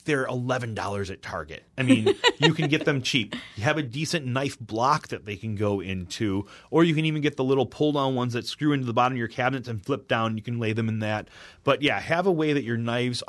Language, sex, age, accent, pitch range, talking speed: English, male, 30-49, American, 95-130 Hz, 255 wpm